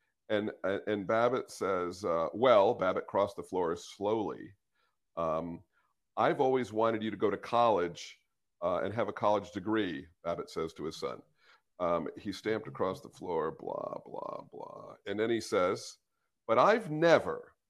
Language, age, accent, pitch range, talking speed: English, 50-69, American, 115-170 Hz, 160 wpm